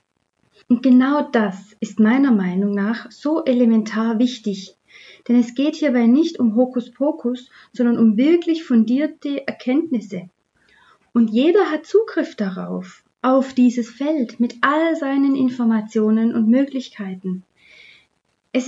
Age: 30-49